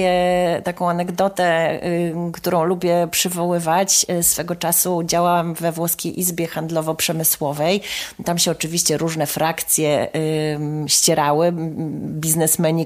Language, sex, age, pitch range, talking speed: Polish, female, 30-49, 160-200 Hz, 90 wpm